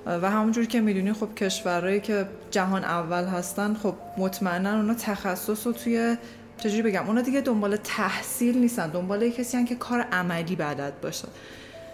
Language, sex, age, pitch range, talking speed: Persian, female, 20-39, 180-235 Hz, 155 wpm